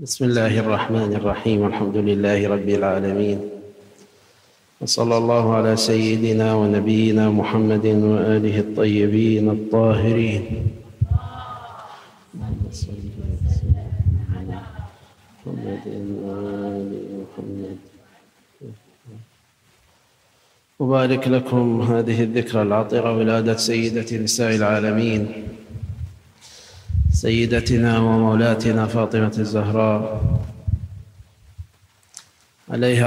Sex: male